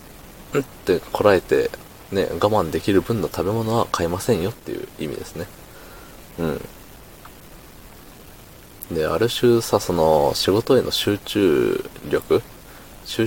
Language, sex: Japanese, male